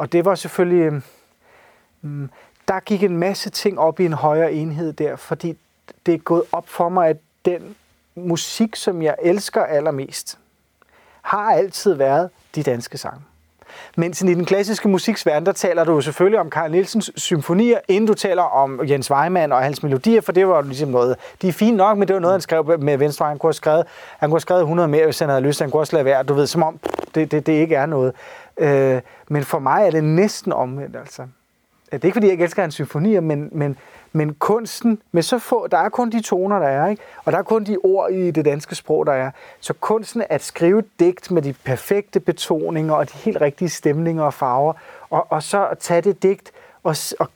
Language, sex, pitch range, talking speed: Danish, male, 155-195 Hz, 215 wpm